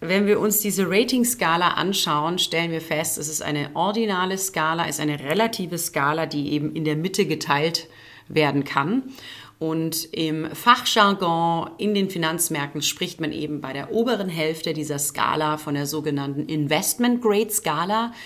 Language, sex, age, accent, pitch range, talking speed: German, female, 30-49, German, 155-210 Hz, 150 wpm